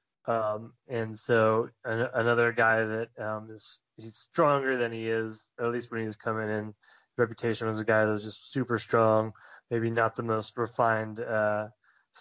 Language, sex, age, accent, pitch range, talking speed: English, male, 20-39, American, 110-125 Hz, 170 wpm